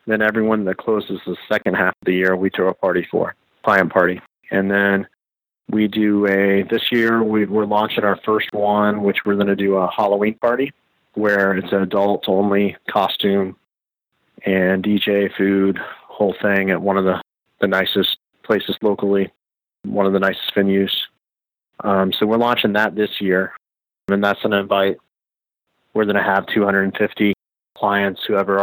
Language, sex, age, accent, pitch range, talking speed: English, male, 30-49, American, 95-105 Hz, 170 wpm